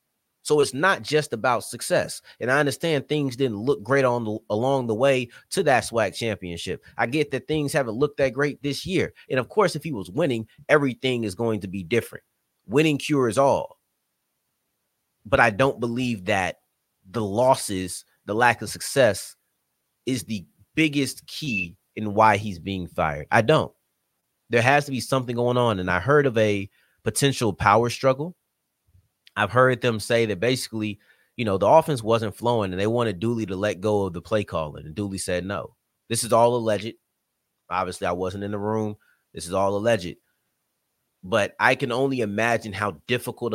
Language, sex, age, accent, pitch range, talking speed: English, male, 30-49, American, 105-135 Hz, 180 wpm